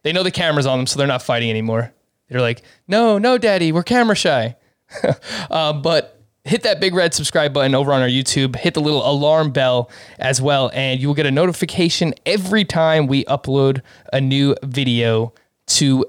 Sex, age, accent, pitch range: male, 20-39, American, 130-170 Hz